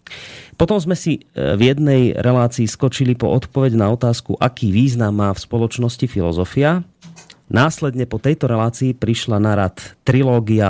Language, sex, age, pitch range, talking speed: Slovak, male, 30-49, 100-125 Hz, 140 wpm